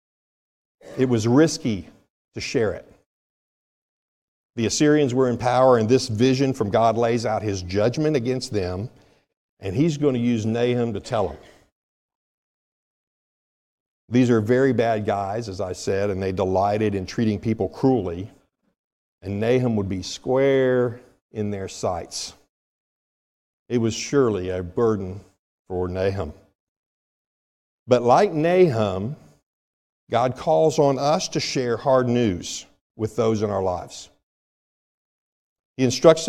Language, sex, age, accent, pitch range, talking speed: English, male, 50-69, American, 100-130 Hz, 130 wpm